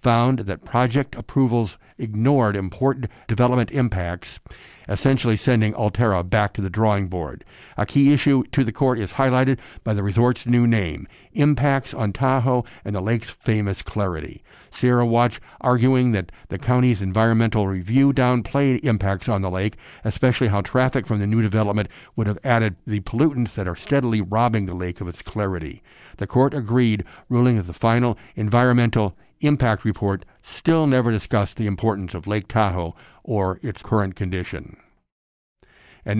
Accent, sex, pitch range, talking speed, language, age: American, male, 100-125 Hz, 155 wpm, English, 60-79